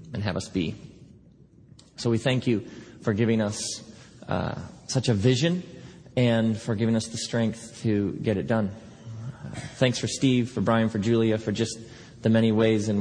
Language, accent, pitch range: English, American, 110-140 Hz